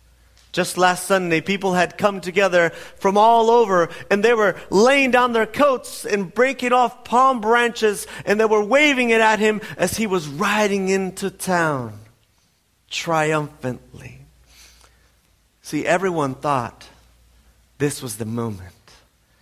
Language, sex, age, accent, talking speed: English, male, 40-59, American, 135 wpm